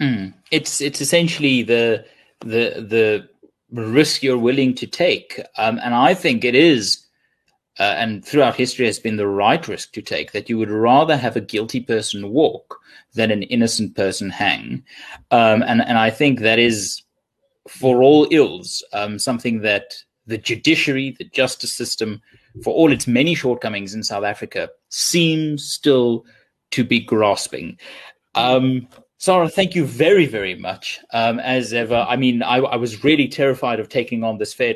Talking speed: 165 wpm